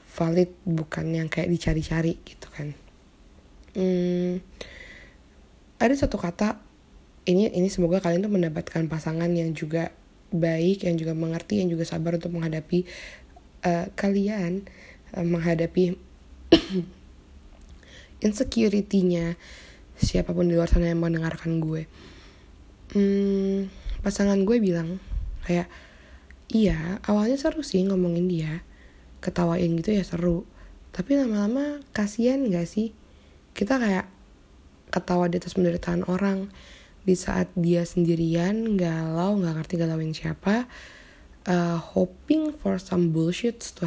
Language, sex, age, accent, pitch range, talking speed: Indonesian, female, 20-39, native, 165-195 Hz, 115 wpm